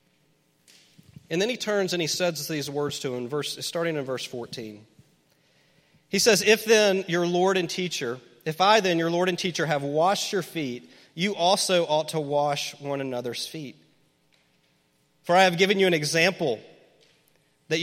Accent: American